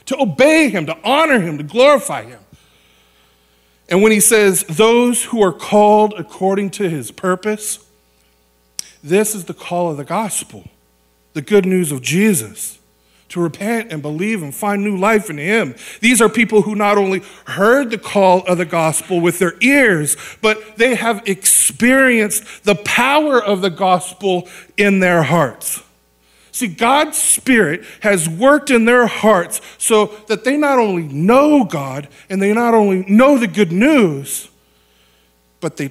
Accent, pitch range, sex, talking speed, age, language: American, 140-225 Hz, male, 160 wpm, 50-69, English